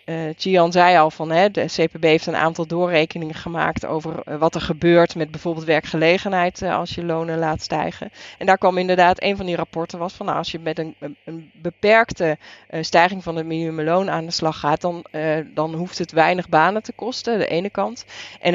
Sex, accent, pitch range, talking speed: female, Dutch, 155-180 Hz, 215 wpm